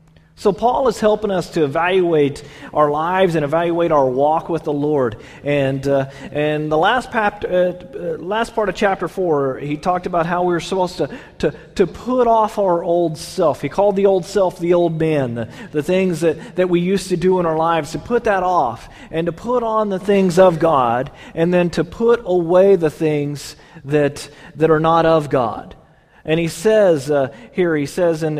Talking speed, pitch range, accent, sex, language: 200 wpm, 150-195 Hz, American, male, English